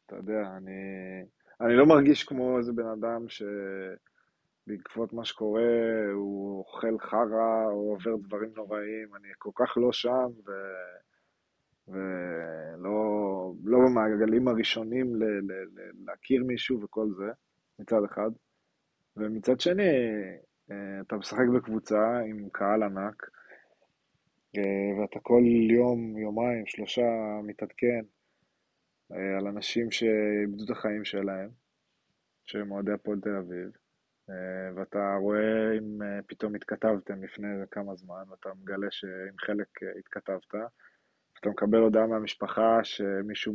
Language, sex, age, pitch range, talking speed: Hebrew, male, 20-39, 100-115 Hz, 105 wpm